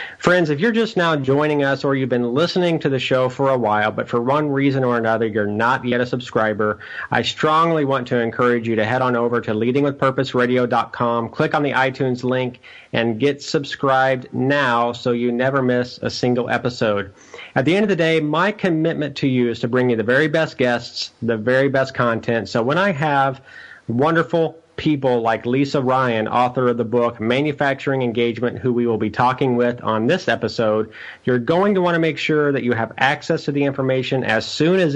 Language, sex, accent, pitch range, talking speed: English, male, American, 115-140 Hz, 205 wpm